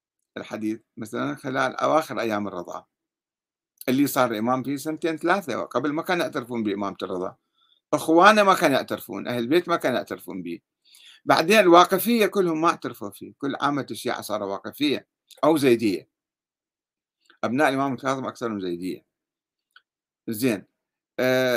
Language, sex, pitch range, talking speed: Arabic, male, 125-200 Hz, 130 wpm